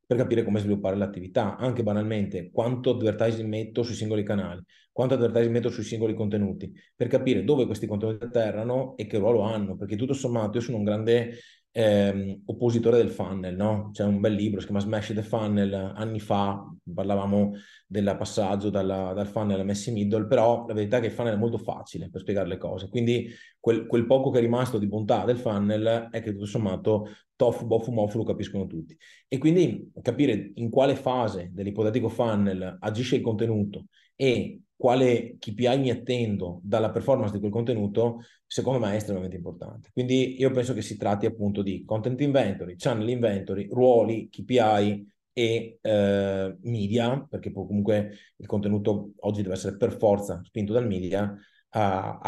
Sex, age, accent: male, 20-39, native